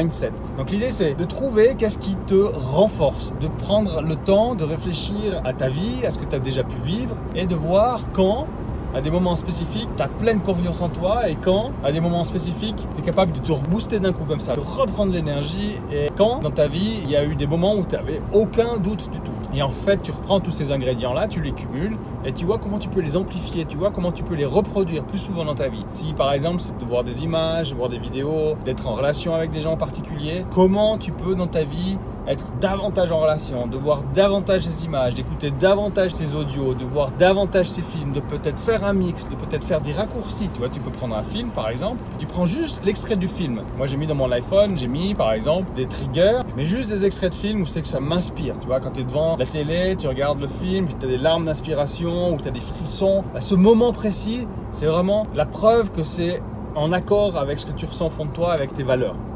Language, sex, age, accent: French, male, 30-49, French